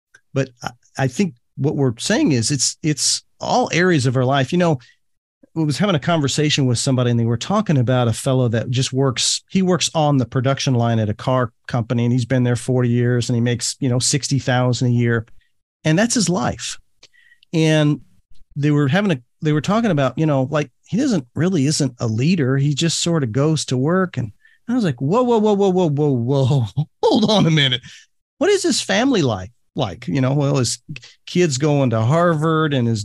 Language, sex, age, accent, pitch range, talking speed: English, male, 40-59, American, 125-175 Hz, 215 wpm